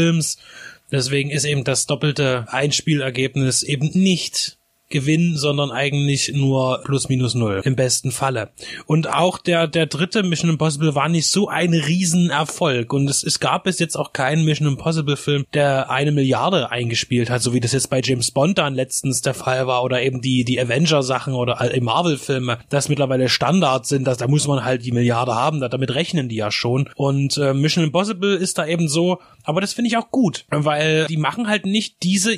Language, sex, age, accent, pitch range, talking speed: German, male, 30-49, German, 135-165 Hz, 185 wpm